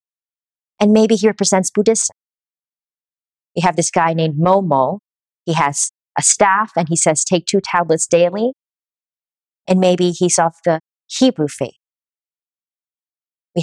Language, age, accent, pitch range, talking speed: English, 40-59, American, 160-205 Hz, 130 wpm